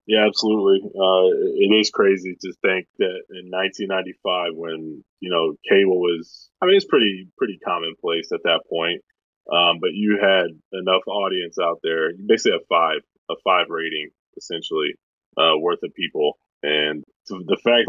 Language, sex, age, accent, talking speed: English, male, 20-39, American, 165 wpm